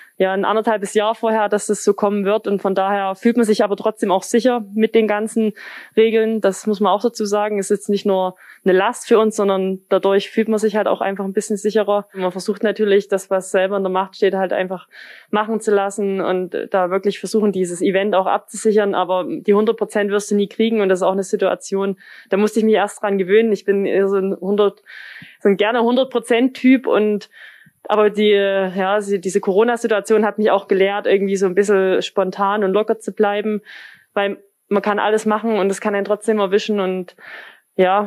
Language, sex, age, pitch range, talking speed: German, female, 20-39, 195-215 Hz, 210 wpm